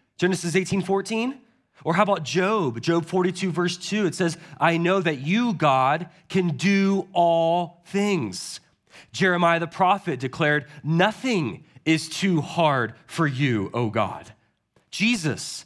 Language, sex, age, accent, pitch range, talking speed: English, male, 30-49, American, 155-200 Hz, 135 wpm